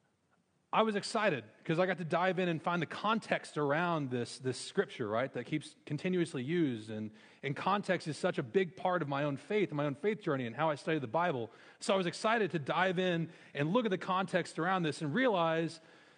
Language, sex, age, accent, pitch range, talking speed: English, male, 40-59, American, 135-175 Hz, 225 wpm